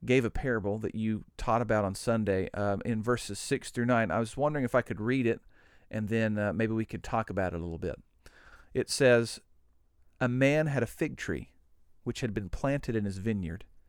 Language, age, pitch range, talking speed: English, 40-59, 95-130 Hz, 215 wpm